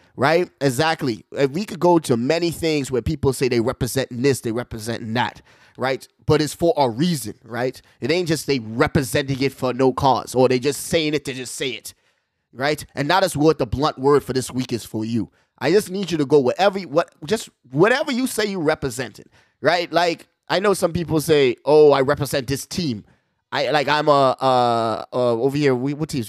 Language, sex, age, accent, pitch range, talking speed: English, male, 20-39, American, 130-185 Hz, 215 wpm